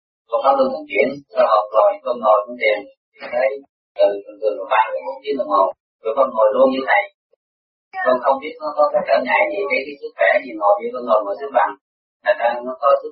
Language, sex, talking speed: Vietnamese, male, 95 wpm